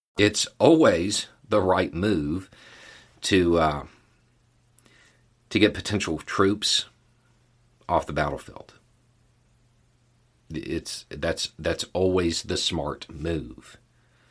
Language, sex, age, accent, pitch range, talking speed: English, male, 40-59, American, 80-110 Hz, 90 wpm